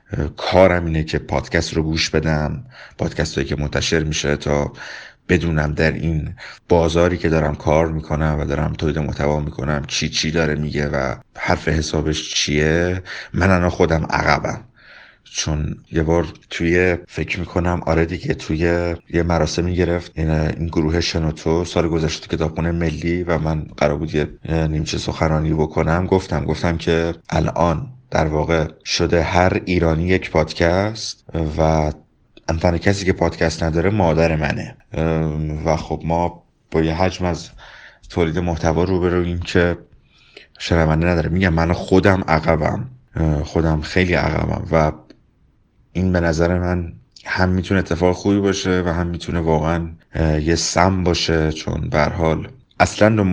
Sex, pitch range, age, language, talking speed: male, 80-90 Hz, 30-49, Persian, 140 wpm